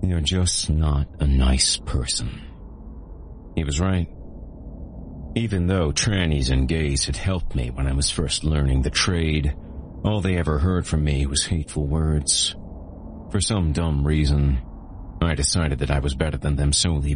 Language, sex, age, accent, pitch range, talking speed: English, male, 40-59, American, 70-90 Hz, 160 wpm